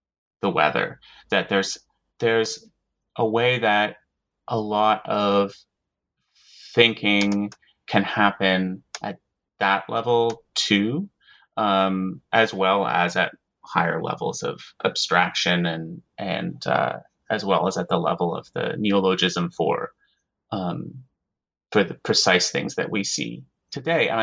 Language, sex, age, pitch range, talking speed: English, male, 30-49, 95-115 Hz, 125 wpm